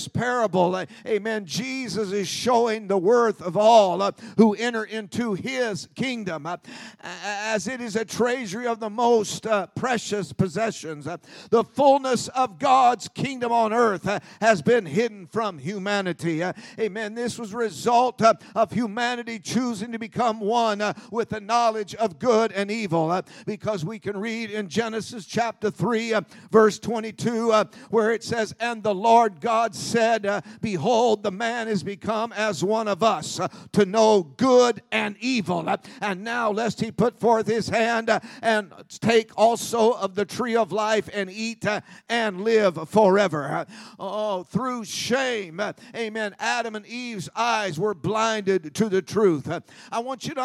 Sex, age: male, 50-69